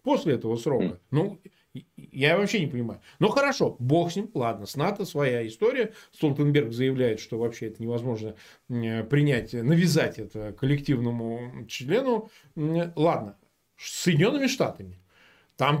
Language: Russian